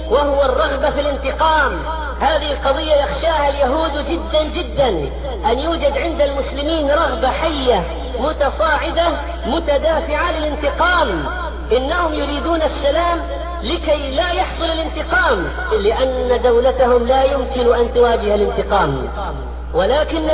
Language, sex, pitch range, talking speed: Arabic, female, 265-310 Hz, 100 wpm